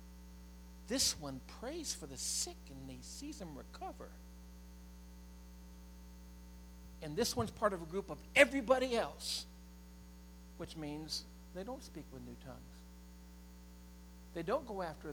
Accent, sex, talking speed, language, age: American, male, 130 wpm, English, 60-79